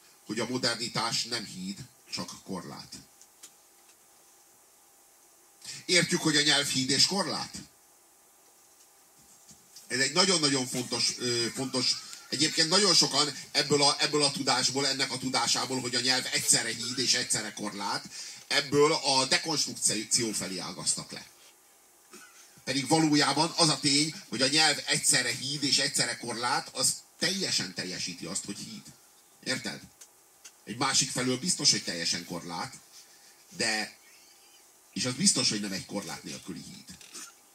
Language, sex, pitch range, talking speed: Hungarian, male, 115-150 Hz, 130 wpm